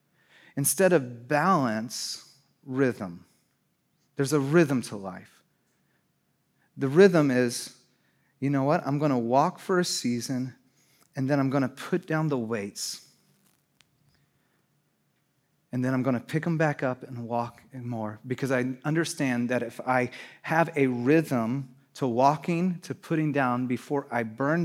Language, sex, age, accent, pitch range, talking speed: English, male, 30-49, American, 135-190 Hz, 150 wpm